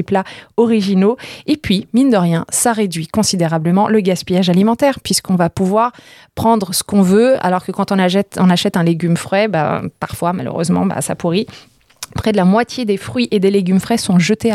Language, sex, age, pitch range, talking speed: French, female, 20-39, 180-225 Hz, 200 wpm